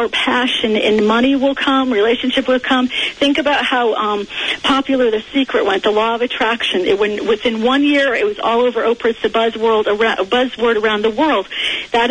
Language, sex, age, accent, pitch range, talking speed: English, female, 40-59, American, 225-265 Hz, 190 wpm